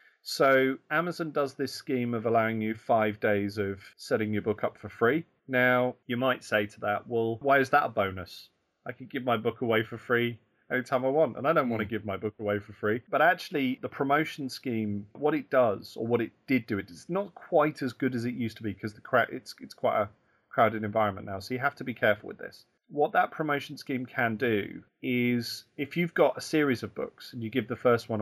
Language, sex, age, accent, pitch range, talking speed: English, male, 30-49, British, 110-130 Hz, 230 wpm